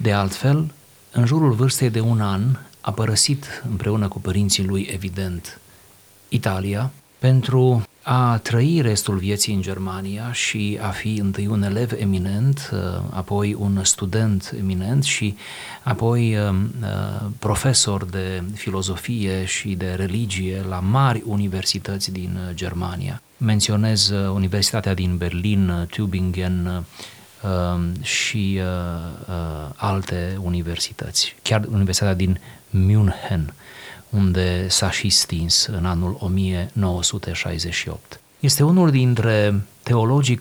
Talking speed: 105 wpm